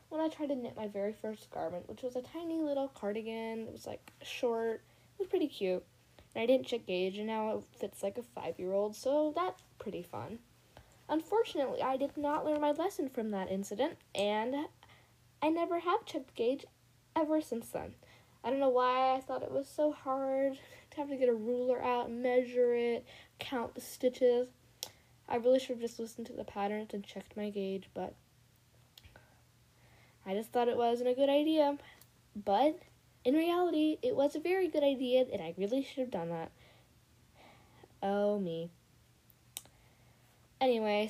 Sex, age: female, 10-29